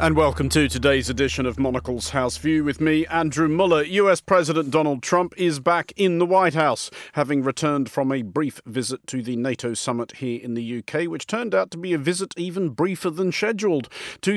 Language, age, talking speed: English, 50-69, 205 wpm